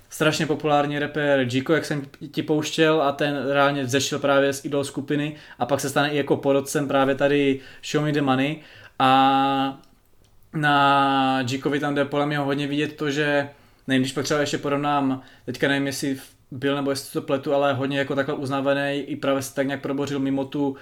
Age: 20-39